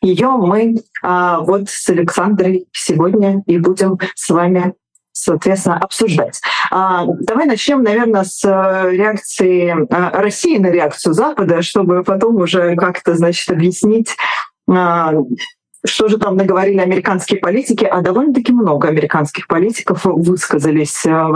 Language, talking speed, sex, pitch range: Russian, 125 wpm, female, 175-215 Hz